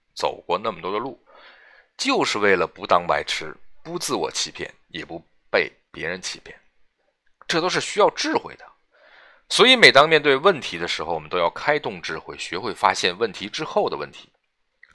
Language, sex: Chinese, male